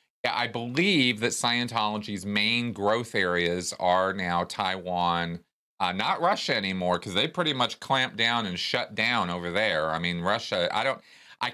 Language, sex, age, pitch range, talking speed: English, male, 40-59, 95-115 Hz, 160 wpm